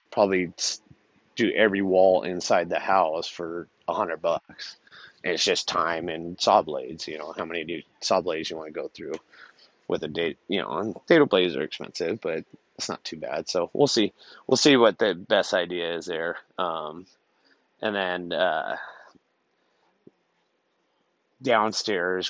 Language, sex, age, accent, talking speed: English, male, 30-49, American, 160 wpm